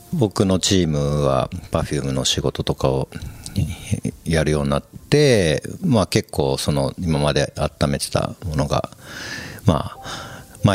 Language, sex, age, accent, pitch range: Japanese, male, 50-69, native, 75-105 Hz